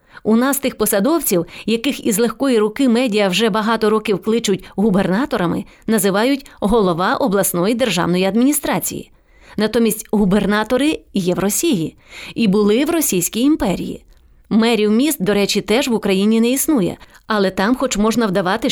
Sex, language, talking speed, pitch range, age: female, English, 140 wpm, 200-270 Hz, 30-49